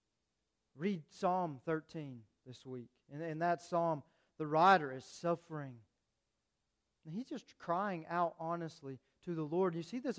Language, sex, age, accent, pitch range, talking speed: English, male, 40-59, American, 140-205 Hz, 145 wpm